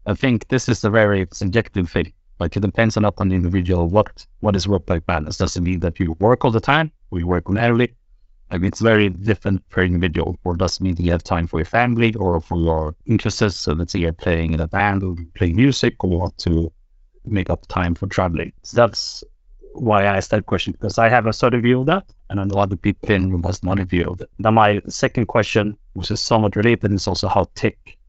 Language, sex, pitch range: English, male, 85-105 Hz